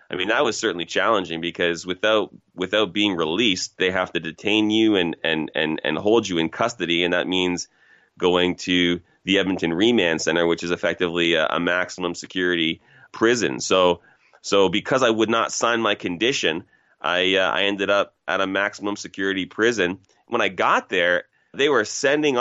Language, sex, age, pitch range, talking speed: English, male, 30-49, 90-115 Hz, 175 wpm